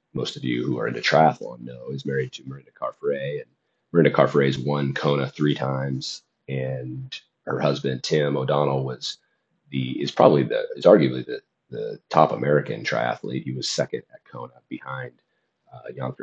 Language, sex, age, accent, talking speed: English, male, 30-49, American, 165 wpm